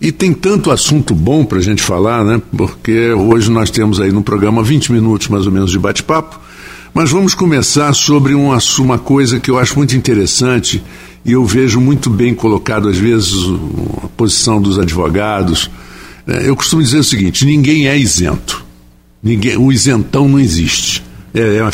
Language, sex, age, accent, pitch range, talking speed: Portuguese, male, 60-79, Brazilian, 95-135 Hz, 170 wpm